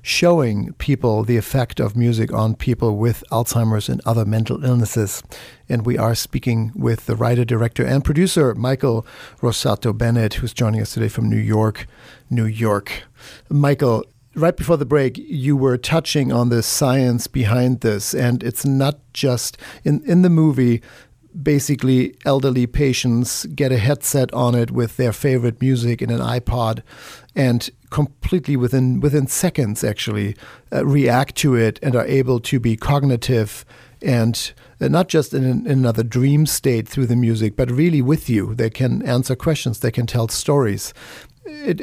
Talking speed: 160 wpm